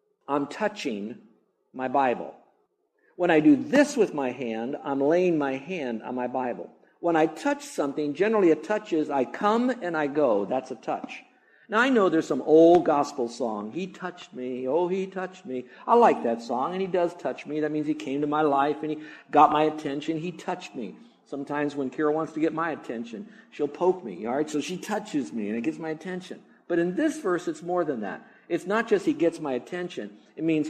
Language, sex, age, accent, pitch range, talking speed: English, male, 60-79, American, 135-185 Hz, 220 wpm